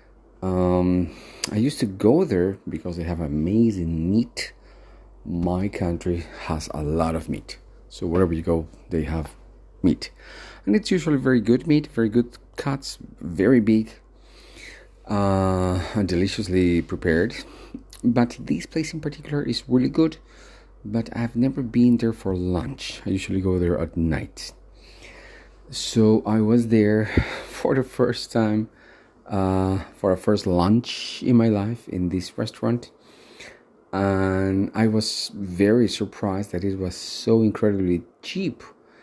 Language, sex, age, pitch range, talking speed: English, male, 40-59, 90-115 Hz, 140 wpm